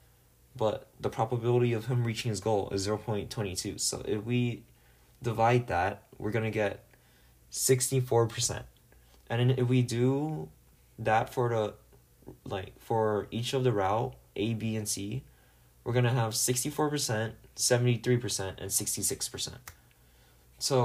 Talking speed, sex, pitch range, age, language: 160 wpm, male, 100-125 Hz, 20-39, English